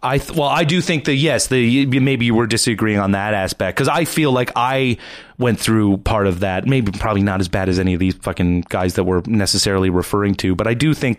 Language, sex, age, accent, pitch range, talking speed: English, male, 30-49, American, 100-135 Hz, 240 wpm